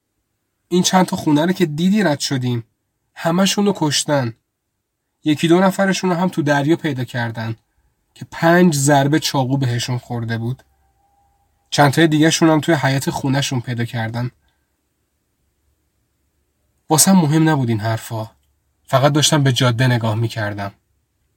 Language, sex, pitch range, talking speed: Persian, male, 110-145 Hz, 135 wpm